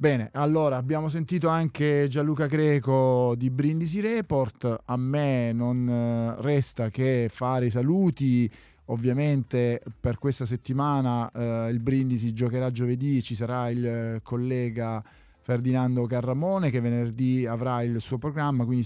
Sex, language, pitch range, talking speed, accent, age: male, Italian, 120-140 Hz, 125 wpm, native, 30-49